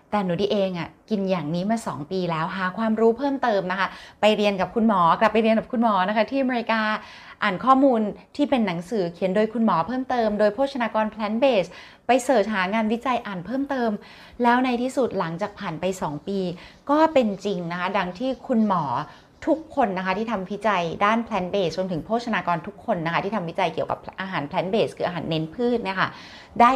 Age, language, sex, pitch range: 20-39, Thai, female, 185-240 Hz